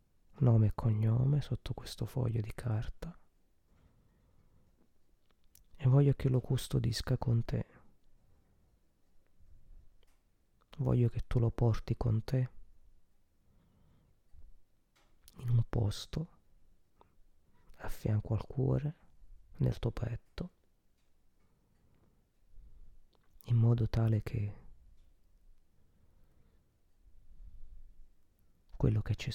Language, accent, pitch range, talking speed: Italian, native, 90-125 Hz, 80 wpm